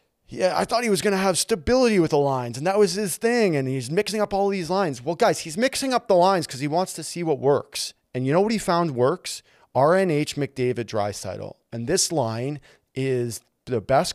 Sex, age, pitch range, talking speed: male, 30-49, 115-160 Hz, 230 wpm